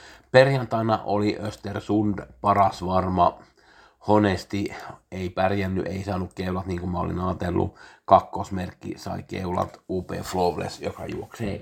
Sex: male